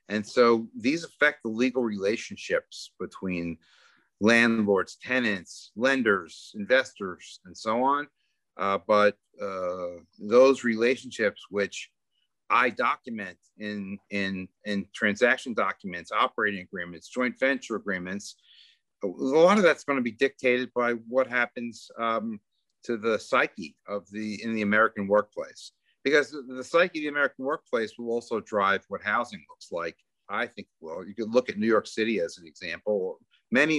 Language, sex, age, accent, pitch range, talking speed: English, male, 40-59, American, 100-120 Hz, 145 wpm